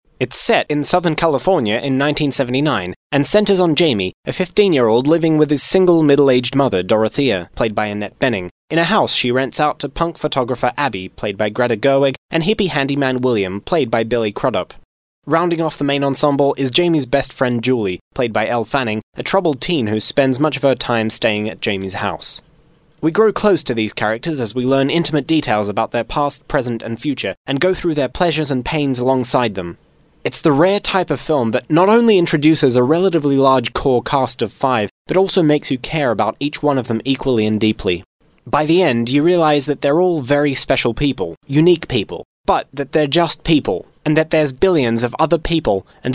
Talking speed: 200 wpm